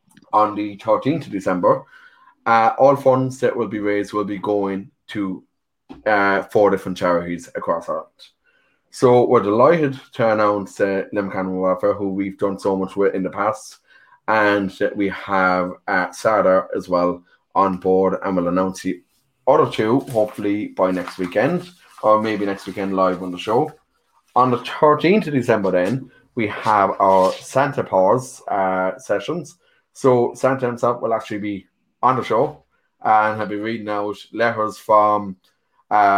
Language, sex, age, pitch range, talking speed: English, male, 20-39, 100-120 Hz, 160 wpm